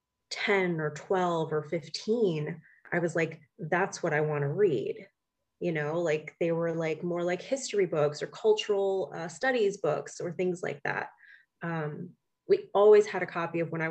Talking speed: 180 wpm